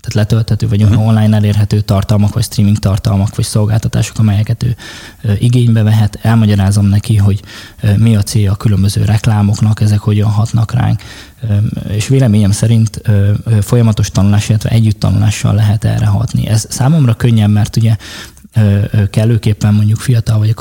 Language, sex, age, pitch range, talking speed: Hungarian, male, 20-39, 105-115 Hz, 140 wpm